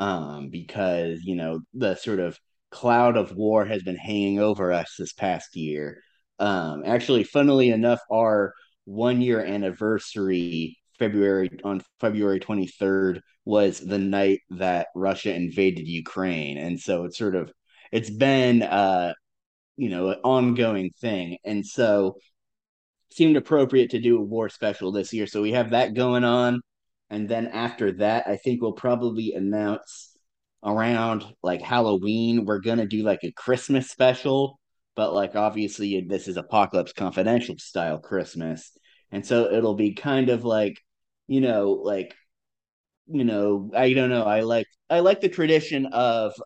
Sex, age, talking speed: male, 30-49, 150 wpm